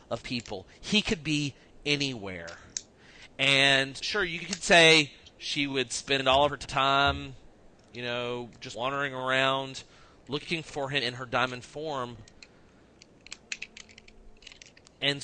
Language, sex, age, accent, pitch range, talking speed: English, male, 30-49, American, 120-150 Hz, 120 wpm